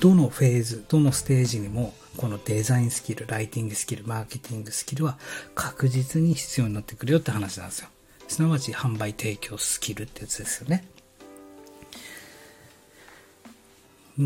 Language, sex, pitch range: Japanese, male, 110-145 Hz